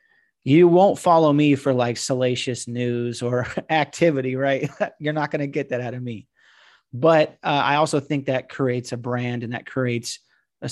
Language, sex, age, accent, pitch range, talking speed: English, male, 30-49, American, 125-145 Hz, 185 wpm